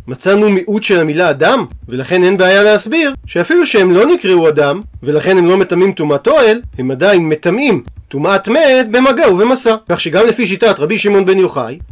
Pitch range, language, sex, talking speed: 165-245 Hz, Hebrew, male, 175 wpm